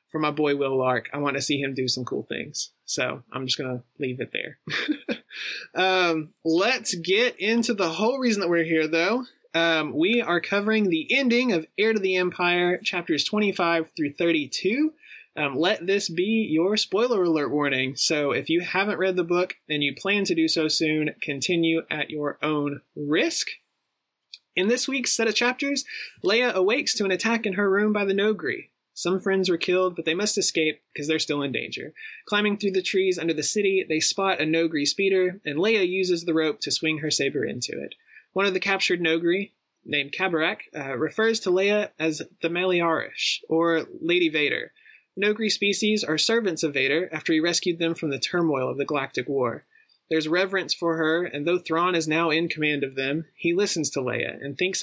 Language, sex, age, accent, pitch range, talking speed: English, male, 20-39, American, 155-205 Hz, 200 wpm